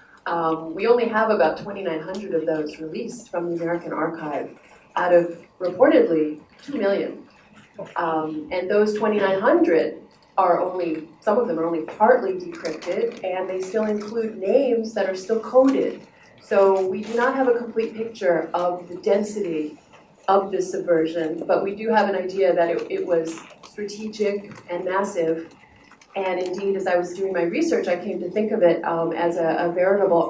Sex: female